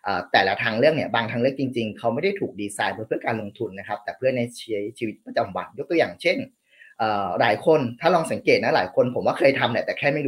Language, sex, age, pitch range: Thai, male, 30-49, 115-155 Hz